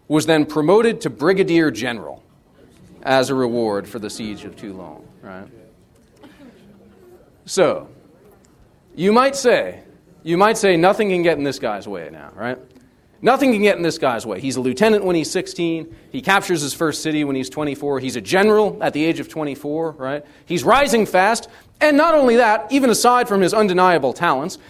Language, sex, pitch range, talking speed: English, male, 120-185 Hz, 180 wpm